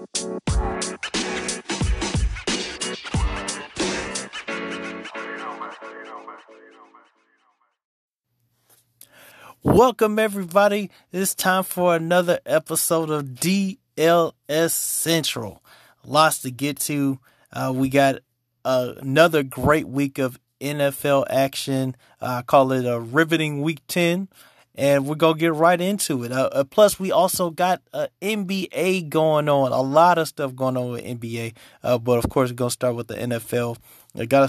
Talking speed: 115 wpm